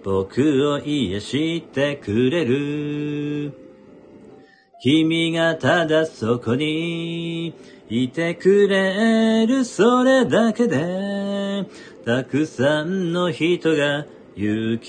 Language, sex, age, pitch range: Japanese, male, 40-59, 130-185 Hz